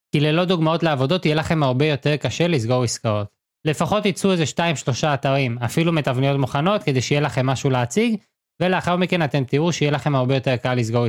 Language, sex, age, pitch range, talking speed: Hebrew, male, 20-39, 130-170 Hz, 185 wpm